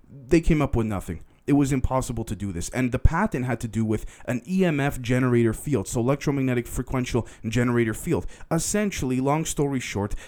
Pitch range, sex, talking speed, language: 120-155 Hz, male, 180 wpm, English